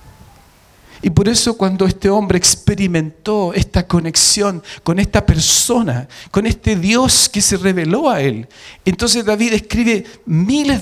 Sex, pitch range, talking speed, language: male, 165-230 Hz, 135 wpm, Spanish